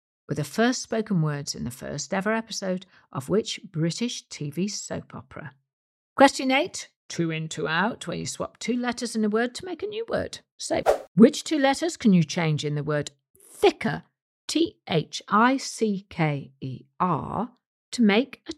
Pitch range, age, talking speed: 150-220 Hz, 50-69, 160 wpm